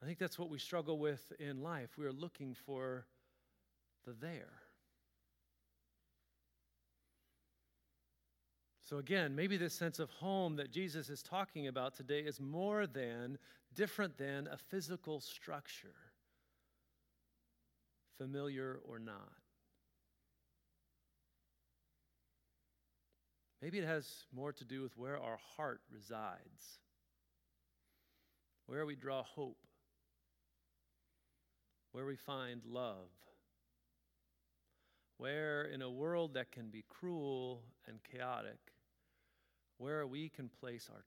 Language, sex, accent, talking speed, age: English, male, American, 105 wpm, 50-69